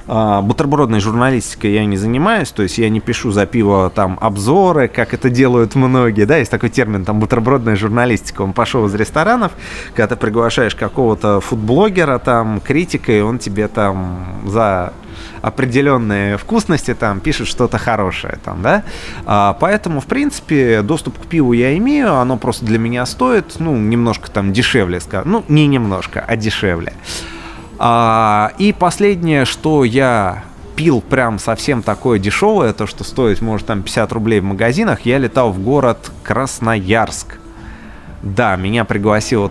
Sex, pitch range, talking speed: male, 100-130 Hz, 145 wpm